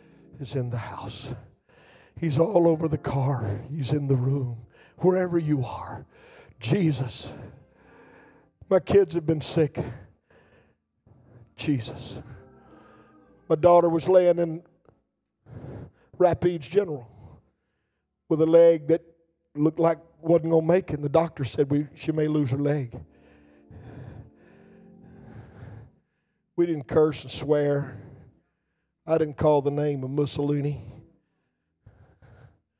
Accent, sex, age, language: American, male, 50-69, English